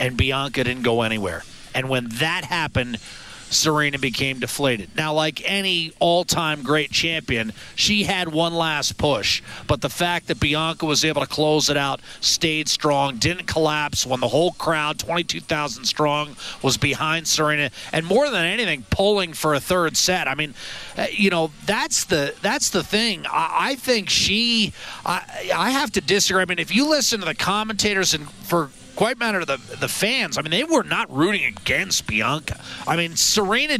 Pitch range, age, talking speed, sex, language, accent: 150-205 Hz, 40-59, 180 wpm, male, English, American